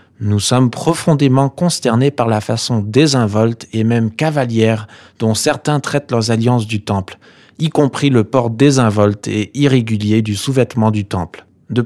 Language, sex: French, male